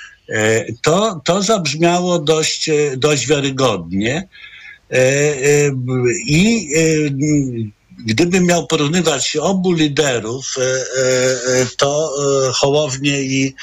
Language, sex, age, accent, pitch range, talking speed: Polish, male, 50-69, native, 130-165 Hz, 70 wpm